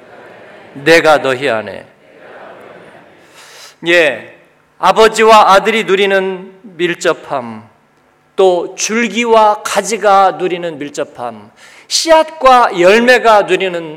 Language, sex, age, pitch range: Korean, male, 40-59, 170-235 Hz